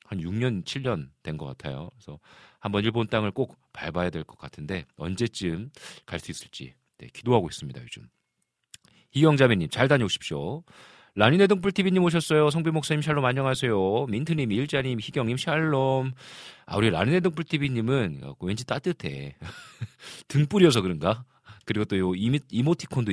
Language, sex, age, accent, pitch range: Korean, male, 40-59, native, 85-135 Hz